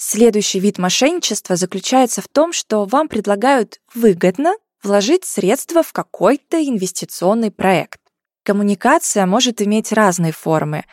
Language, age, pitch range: Russian, 20-39, 190-250 Hz